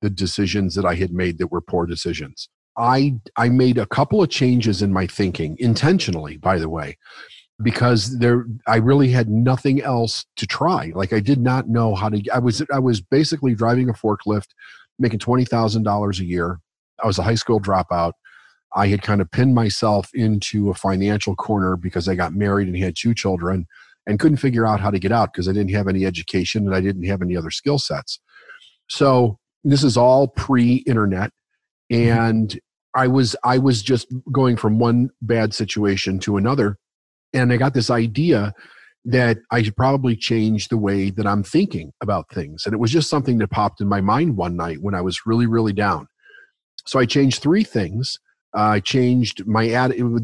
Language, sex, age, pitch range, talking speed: English, male, 40-59, 100-125 Hz, 190 wpm